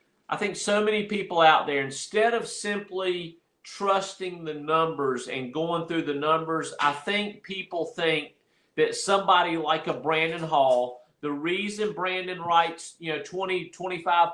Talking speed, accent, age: 150 wpm, American, 40-59